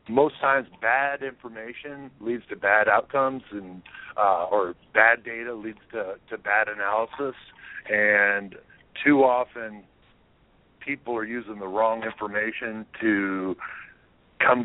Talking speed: 120 wpm